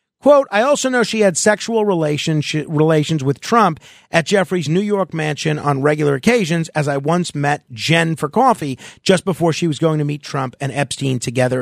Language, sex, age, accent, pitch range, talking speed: English, male, 40-59, American, 140-195 Hz, 185 wpm